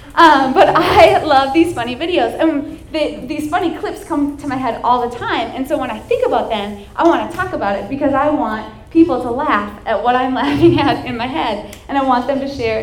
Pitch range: 225-310 Hz